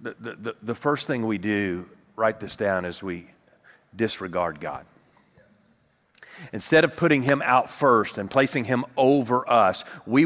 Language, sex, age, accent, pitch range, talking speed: English, male, 40-59, American, 115-145 Hz, 150 wpm